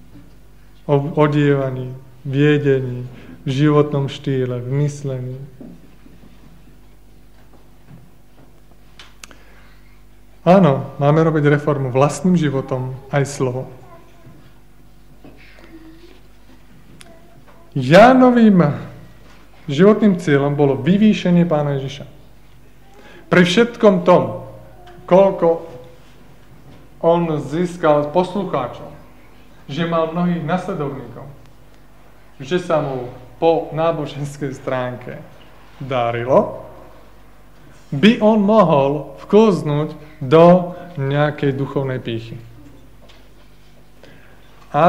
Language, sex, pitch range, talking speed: Slovak, male, 135-170 Hz, 70 wpm